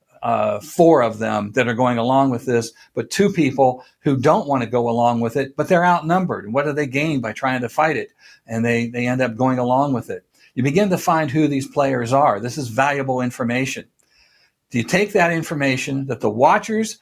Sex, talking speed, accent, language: male, 220 wpm, American, English